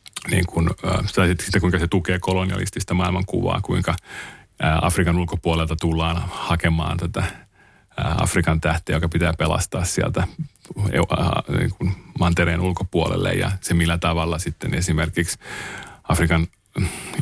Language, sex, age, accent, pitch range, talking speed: Finnish, male, 30-49, native, 80-90 Hz, 110 wpm